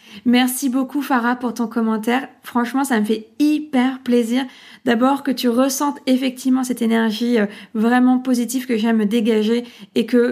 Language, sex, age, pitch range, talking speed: French, female, 20-39, 230-260 Hz, 155 wpm